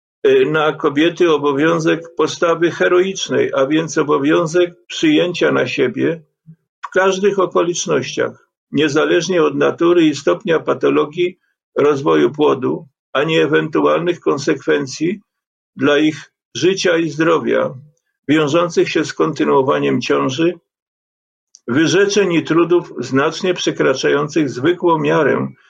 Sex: male